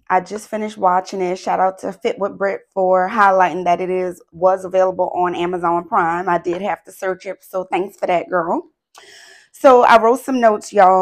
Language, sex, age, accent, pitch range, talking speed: English, female, 20-39, American, 175-210 Hz, 205 wpm